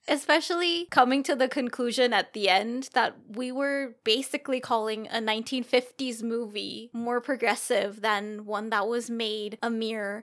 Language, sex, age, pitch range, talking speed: English, female, 20-39, 195-245 Hz, 145 wpm